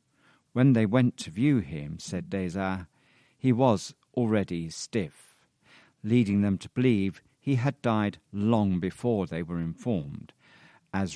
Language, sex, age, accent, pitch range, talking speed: English, male, 50-69, British, 95-130 Hz, 135 wpm